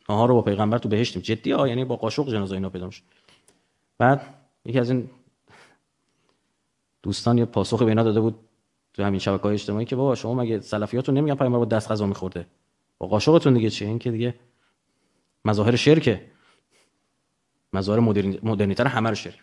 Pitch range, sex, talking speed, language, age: 115-195 Hz, male, 165 wpm, Persian, 30-49